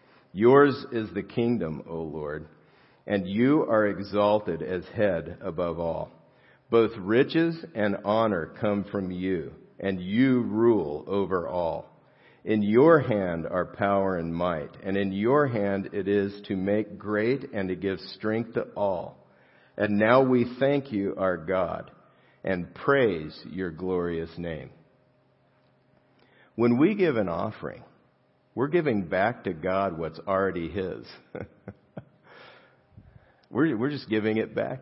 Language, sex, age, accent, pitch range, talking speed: English, male, 50-69, American, 95-120 Hz, 135 wpm